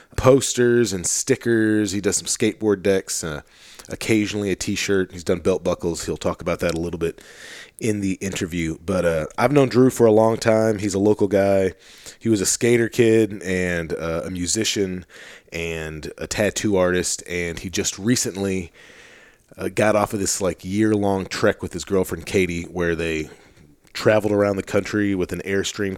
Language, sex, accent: English, male, American